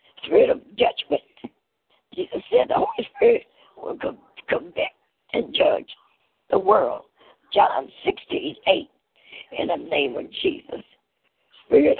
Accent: American